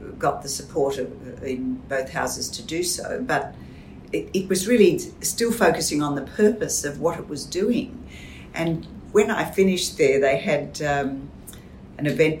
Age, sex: 50-69, female